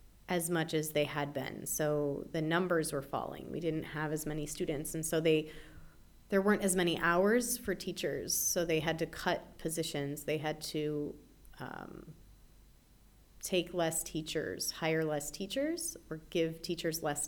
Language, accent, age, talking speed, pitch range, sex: English, American, 30-49, 165 wpm, 150-180 Hz, female